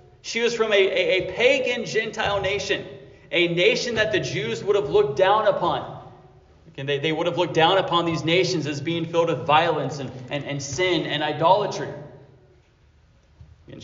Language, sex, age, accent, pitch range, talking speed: English, male, 30-49, American, 130-165 Hz, 180 wpm